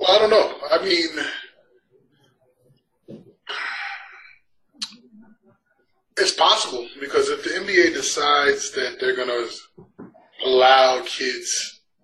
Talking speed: 90 wpm